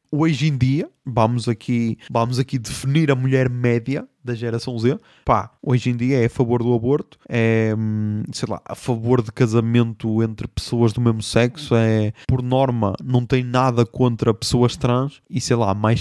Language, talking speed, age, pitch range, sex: Portuguese, 175 wpm, 20-39, 120-165 Hz, male